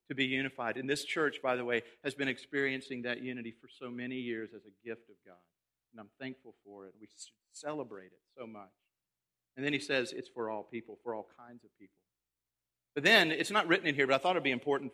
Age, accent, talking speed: 50-69, American, 240 wpm